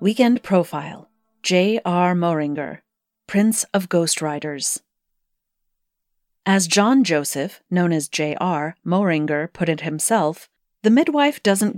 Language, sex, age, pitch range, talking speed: English, female, 40-59, 160-225 Hz, 105 wpm